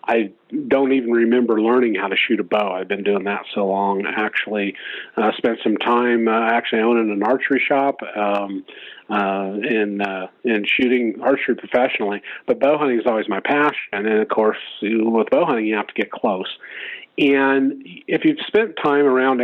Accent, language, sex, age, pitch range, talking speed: American, English, male, 40-59, 115-135 Hz, 190 wpm